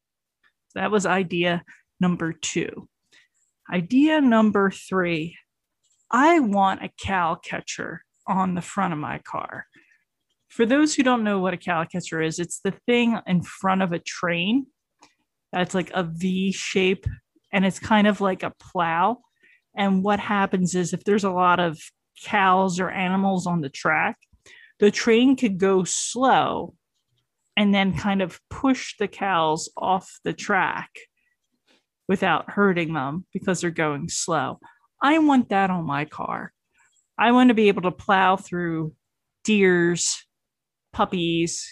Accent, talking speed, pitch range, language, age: American, 145 wpm, 170-210 Hz, English, 30-49